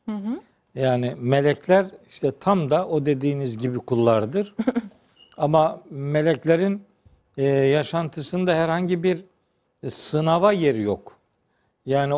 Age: 60-79